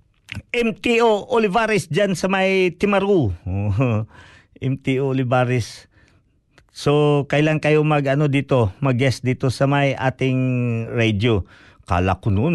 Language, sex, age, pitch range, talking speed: Filipino, male, 50-69, 115-160 Hz, 110 wpm